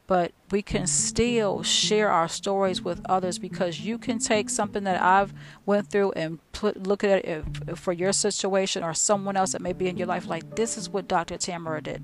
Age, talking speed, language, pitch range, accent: 40-59, 220 wpm, English, 170-200 Hz, American